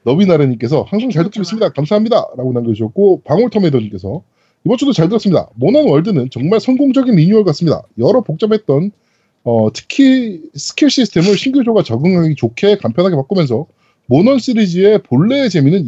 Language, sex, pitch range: Korean, male, 150-220 Hz